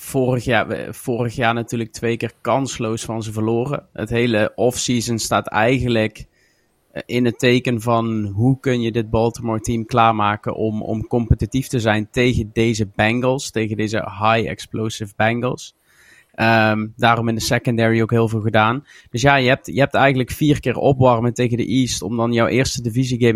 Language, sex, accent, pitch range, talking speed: Dutch, male, Dutch, 115-125 Hz, 175 wpm